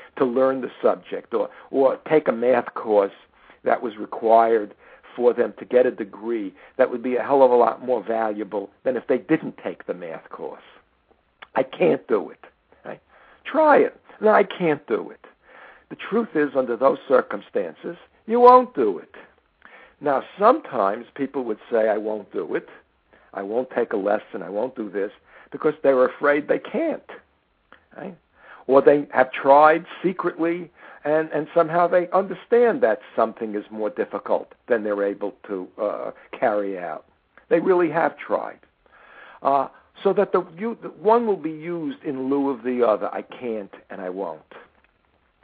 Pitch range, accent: 120-200 Hz, American